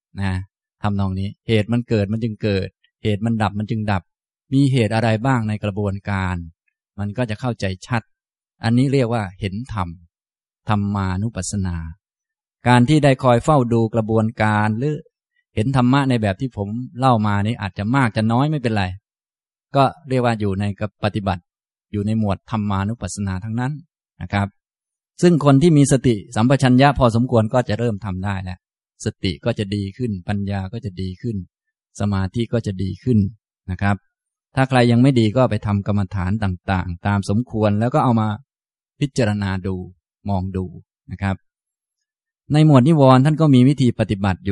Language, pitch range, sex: Thai, 100-125 Hz, male